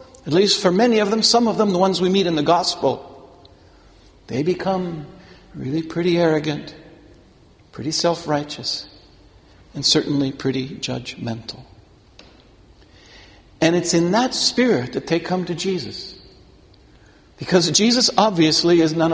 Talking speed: 130 wpm